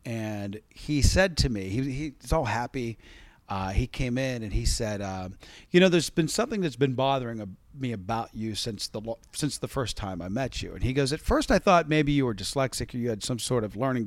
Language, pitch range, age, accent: English, 110-160 Hz, 40-59, American